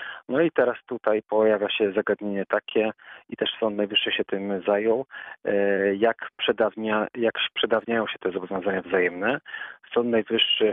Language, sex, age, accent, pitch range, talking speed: Polish, male, 40-59, native, 105-120 Hz, 140 wpm